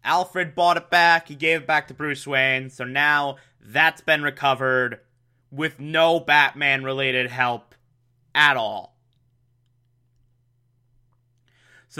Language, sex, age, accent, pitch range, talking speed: English, male, 20-39, American, 120-155 Hz, 115 wpm